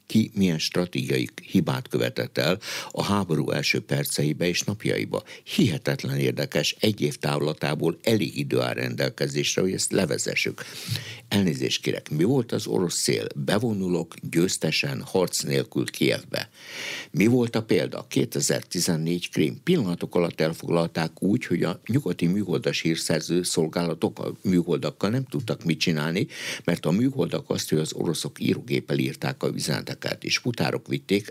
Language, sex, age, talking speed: Hungarian, male, 60-79, 140 wpm